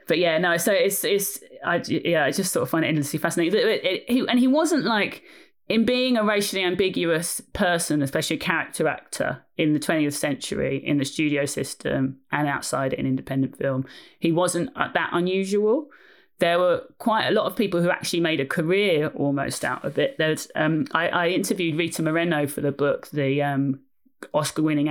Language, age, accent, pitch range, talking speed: English, 30-49, British, 145-185 Hz, 190 wpm